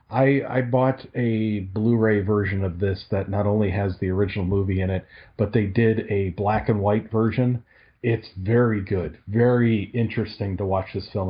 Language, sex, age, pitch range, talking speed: English, male, 40-59, 100-125 Hz, 180 wpm